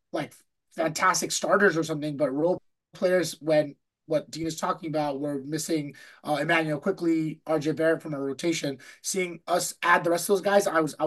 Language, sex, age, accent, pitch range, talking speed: English, male, 30-49, American, 150-190 Hz, 190 wpm